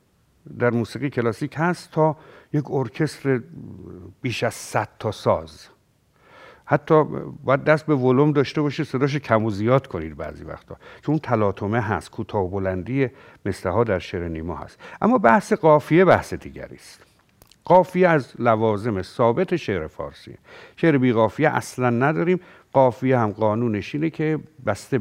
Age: 60-79